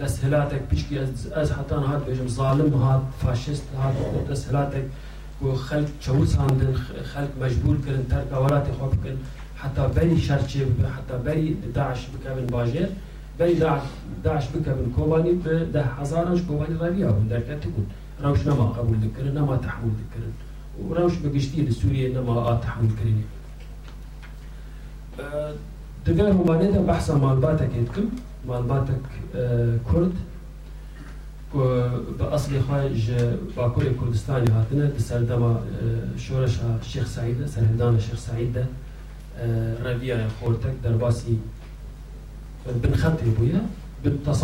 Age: 40-59